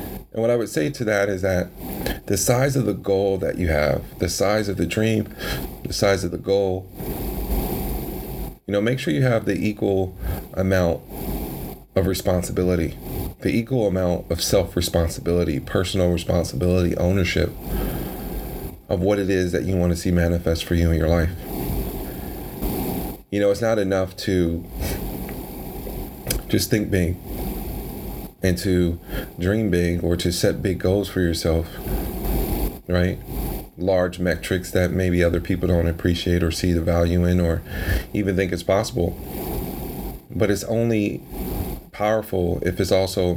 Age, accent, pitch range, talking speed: 30-49, American, 85-95 Hz, 150 wpm